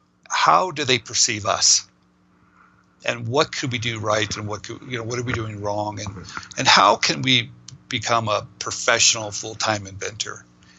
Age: 50-69